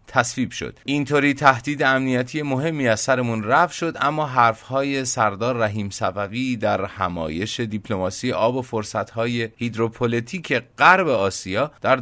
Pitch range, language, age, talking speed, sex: 105-130 Hz, English, 30-49, 120 wpm, male